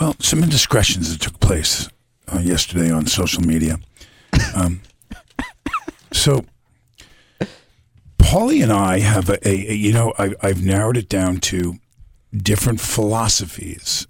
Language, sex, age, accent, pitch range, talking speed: English, male, 50-69, American, 85-105 Hz, 125 wpm